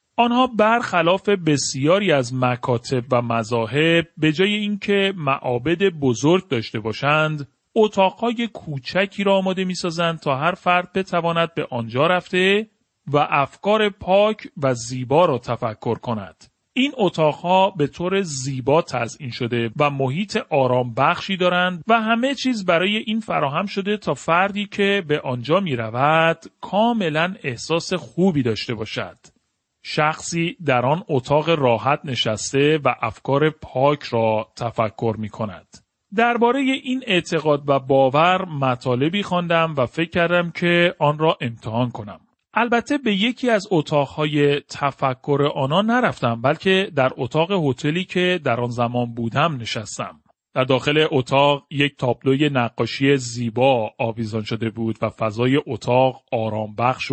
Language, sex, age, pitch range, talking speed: Persian, male, 40-59, 125-185 Hz, 130 wpm